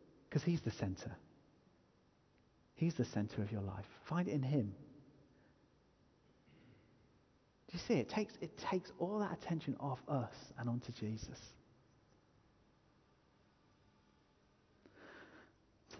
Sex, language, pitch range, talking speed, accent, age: male, English, 120-165 Hz, 115 wpm, British, 40-59